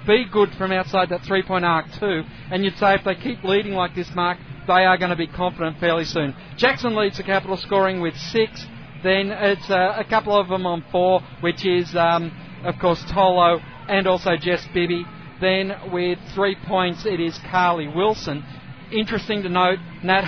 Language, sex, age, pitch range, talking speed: English, male, 40-59, 170-200 Hz, 190 wpm